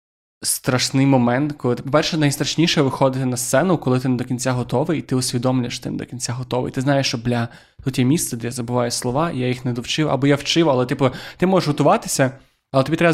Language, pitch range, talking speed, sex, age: Ukrainian, 125-145 Hz, 220 wpm, male, 20-39